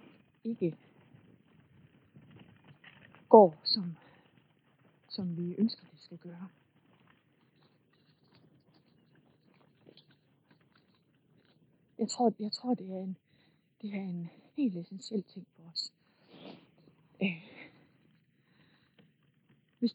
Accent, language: native, Danish